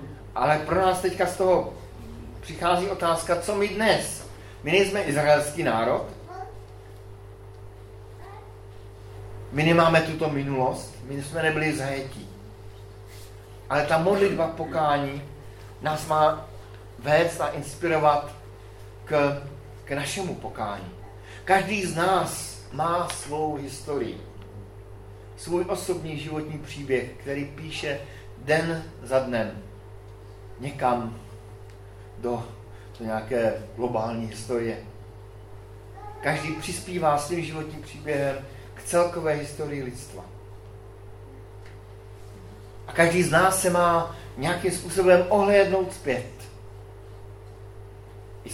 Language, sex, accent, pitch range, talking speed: Czech, male, native, 100-155 Hz, 95 wpm